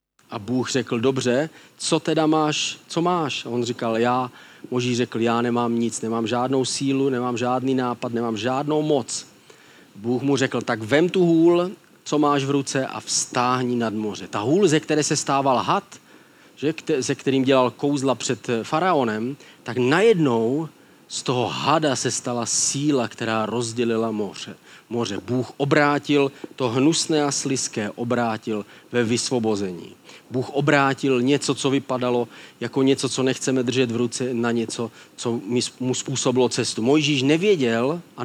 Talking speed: 150 wpm